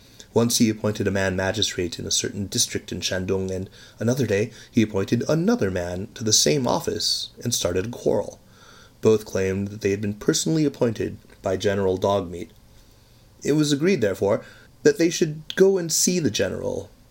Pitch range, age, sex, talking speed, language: 100-120 Hz, 30-49, male, 170 wpm, English